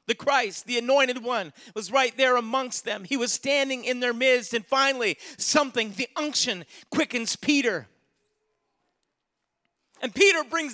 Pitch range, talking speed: 290-435 Hz, 145 wpm